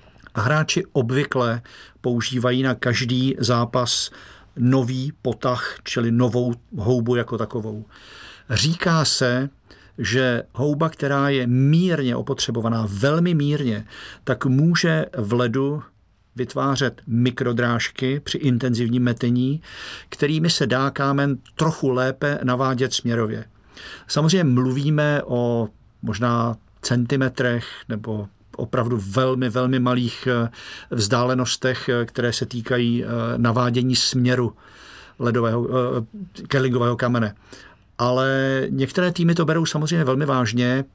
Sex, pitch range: male, 120-135 Hz